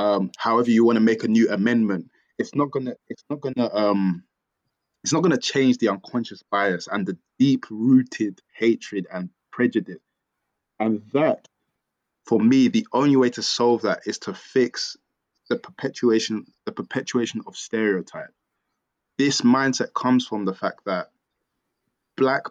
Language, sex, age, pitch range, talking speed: English, male, 20-39, 95-120 Hz, 145 wpm